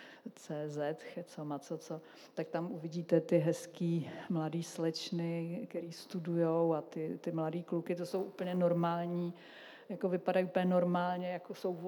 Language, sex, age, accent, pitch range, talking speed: Czech, female, 50-69, native, 160-175 Hz, 140 wpm